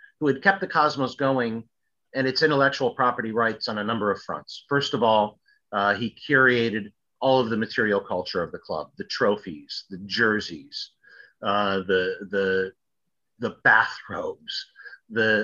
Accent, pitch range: American, 110-150 Hz